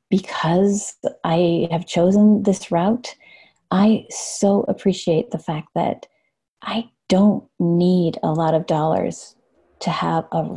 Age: 30-49